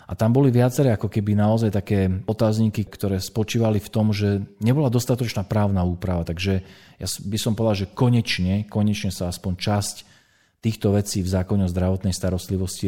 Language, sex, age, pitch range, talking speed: Slovak, male, 40-59, 90-110 Hz, 170 wpm